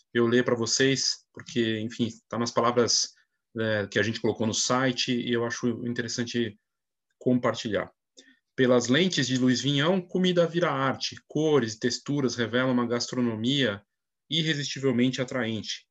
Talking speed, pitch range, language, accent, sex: 140 wpm, 120-140 Hz, Portuguese, Brazilian, male